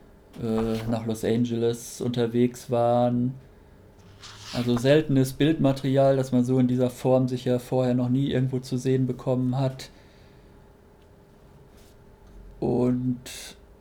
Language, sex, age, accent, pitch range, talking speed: German, male, 50-69, German, 115-130 Hz, 110 wpm